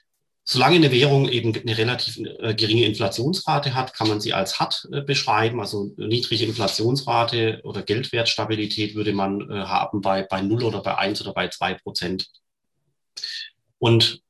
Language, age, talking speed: German, 30-49, 145 wpm